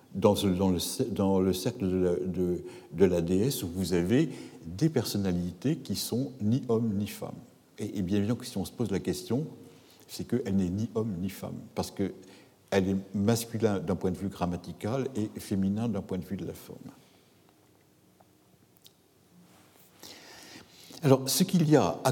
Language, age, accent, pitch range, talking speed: French, 60-79, French, 95-120 Hz, 165 wpm